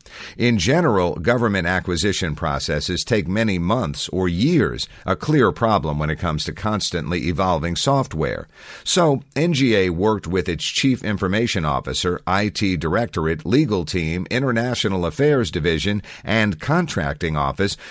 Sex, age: male, 50-69